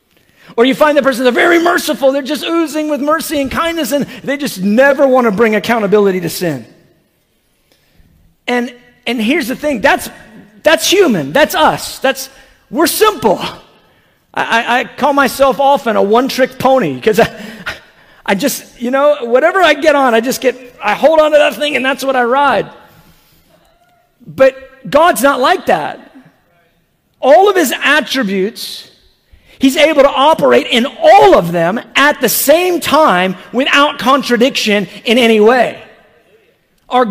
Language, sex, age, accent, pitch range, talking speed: English, male, 50-69, American, 230-300 Hz, 155 wpm